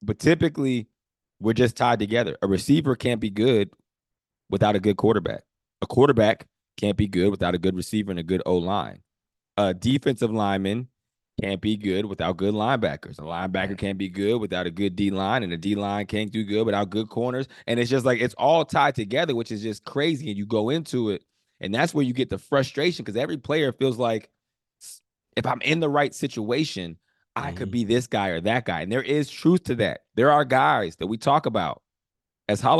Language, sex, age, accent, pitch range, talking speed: English, male, 20-39, American, 100-125 Hz, 205 wpm